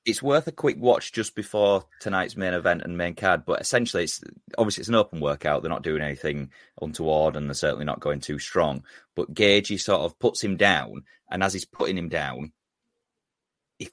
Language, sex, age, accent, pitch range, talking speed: English, male, 30-49, British, 80-100 Hz, 205 wpm